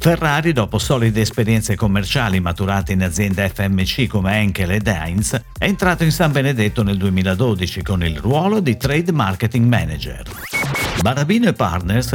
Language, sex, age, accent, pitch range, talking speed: Italian, male, 50-69, native, 95-145 Hz, 145 wpm